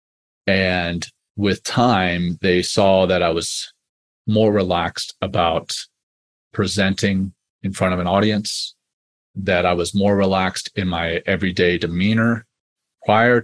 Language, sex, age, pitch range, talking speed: English, male, 30-49, 85-105 Hz, 120 wpm